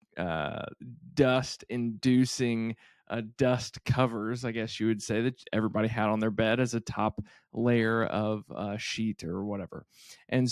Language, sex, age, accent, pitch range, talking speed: English, male, 20-39, American, 110-125 Hz, 155 wpm